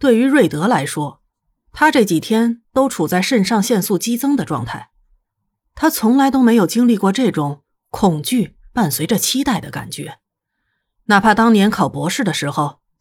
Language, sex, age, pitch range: Chinese, female, 30-49, 175-245 Hz